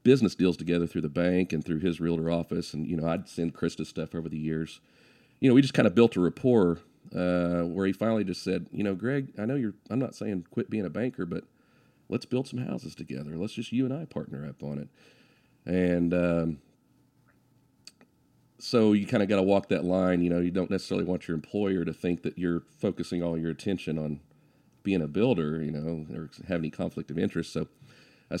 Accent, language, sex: American, English, male